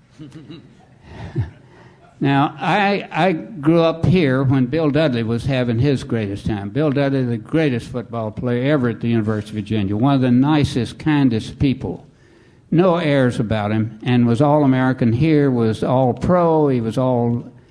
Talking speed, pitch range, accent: 160 wpm, 120-150 Hz, American